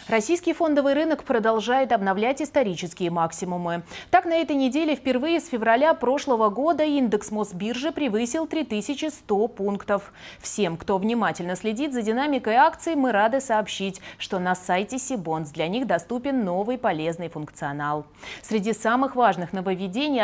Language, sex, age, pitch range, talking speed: Russian, female, 20-39, 185-265 Hz, 135 wpm